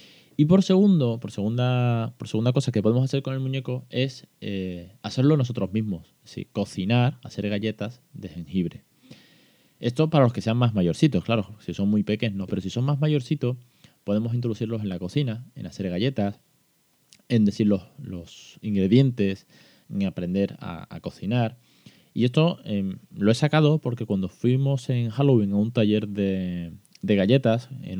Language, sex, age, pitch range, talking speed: Spanish, male, 20-39, 95-130 Hz, 170 wpm